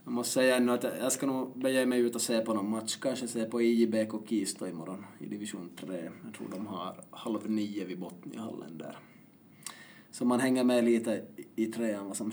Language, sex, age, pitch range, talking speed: Swedish, male, 20-39, 110-135 Hz, 210 wpm